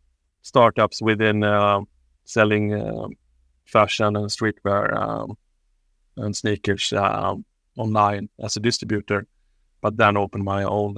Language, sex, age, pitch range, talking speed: English, male, 30-49, 100-115 Hz, 115 wpm